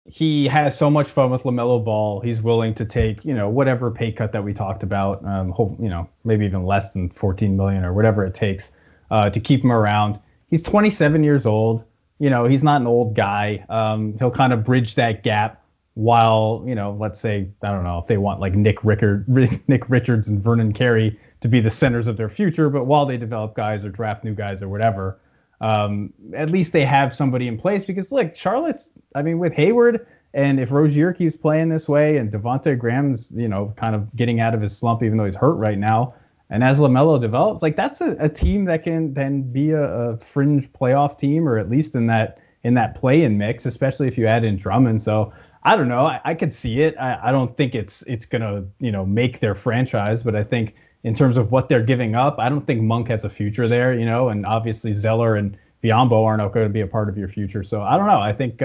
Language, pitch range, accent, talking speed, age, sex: English, 105-140 Hz, American, 235 wpm, 30-49, male